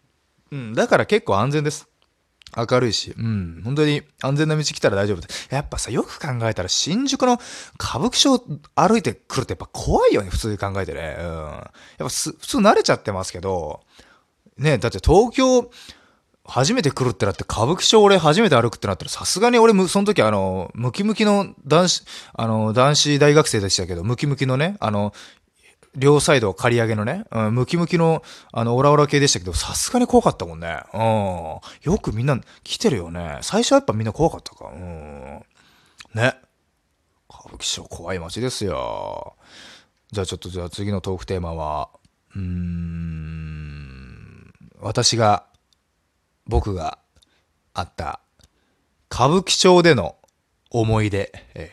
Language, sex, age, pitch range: Japanese, male, 20-39, 90-150 Hz